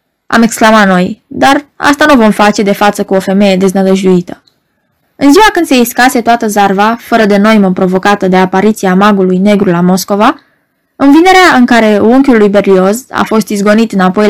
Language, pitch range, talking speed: Romanian, 200-285 Hz, 175 wpm